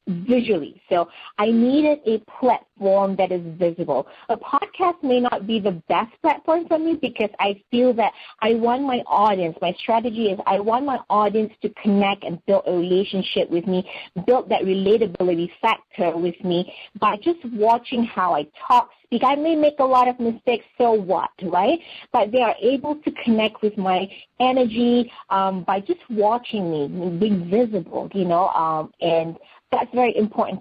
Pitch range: 185-245 Hz